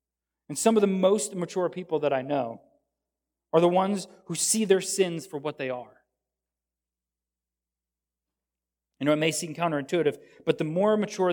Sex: male